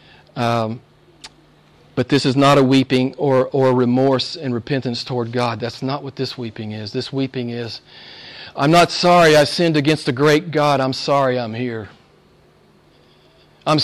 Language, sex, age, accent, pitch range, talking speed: English, male, 40-59, American, 115-150 Hz, 160 wpm